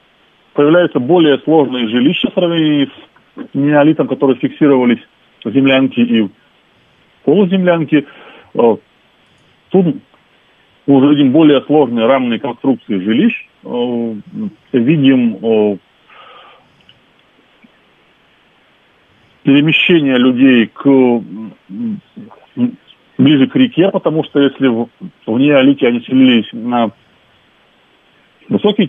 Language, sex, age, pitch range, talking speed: Russian, male, 40-59, 120-180 Hz, 80 wpm